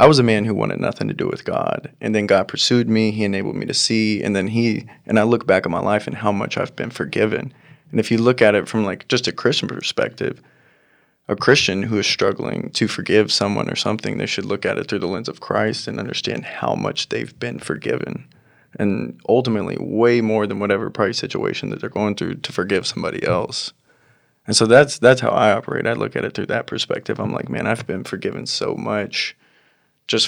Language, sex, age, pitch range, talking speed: English, male, 20-39, 105-120 Hz, 230 wpm